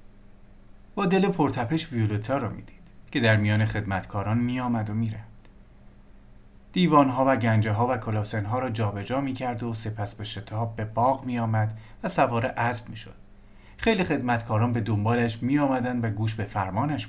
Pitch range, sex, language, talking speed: 105-130 Hz, male, Persian, 160 wpm